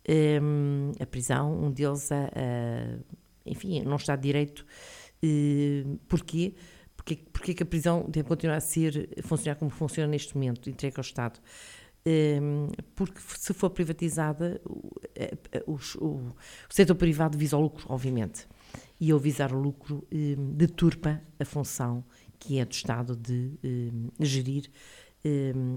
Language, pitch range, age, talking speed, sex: Portuguese, 130-155 Hz, 50-69, 150 wpm, female